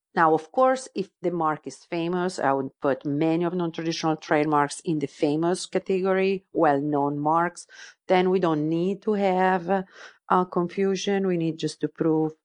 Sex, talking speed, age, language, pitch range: female, 165 wpm, 50-69, English, 145-175 Hz